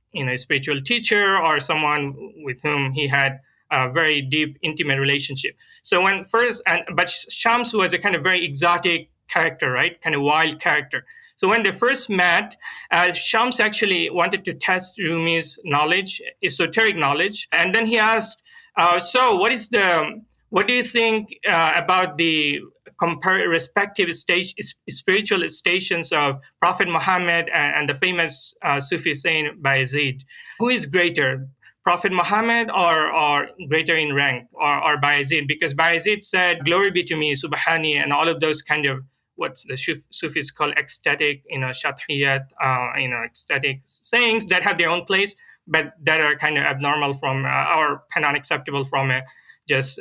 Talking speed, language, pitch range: 170 wpm, English, 145-195 Hz